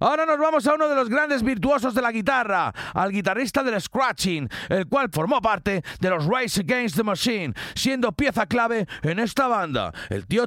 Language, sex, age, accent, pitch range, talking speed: Spanish, male, 40-59, Spanish, 165-240 Hz, 195 wpm